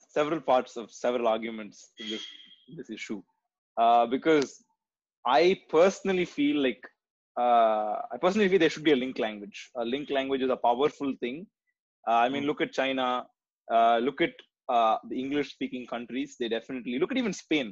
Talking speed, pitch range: 175 wpm, 125-170 Hz